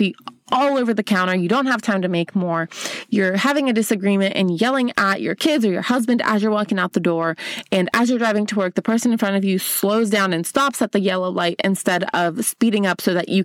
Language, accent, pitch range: English, American, 185-245 Hz